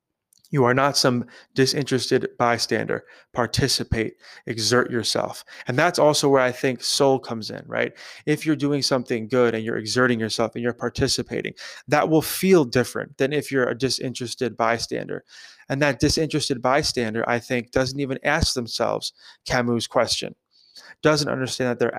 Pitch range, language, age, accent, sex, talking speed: 120-145 Hz, English, 20-39, American, male, 155 wpm